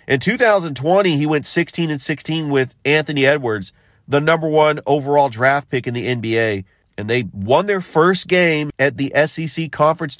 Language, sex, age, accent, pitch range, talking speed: English, male, 40-59, American, 115-145 Hz, 170 wpm